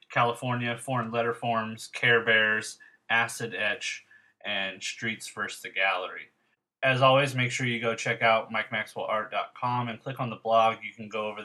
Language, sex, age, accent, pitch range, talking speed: English, male, 30-49, American, 110-125 Hz, 160 wpm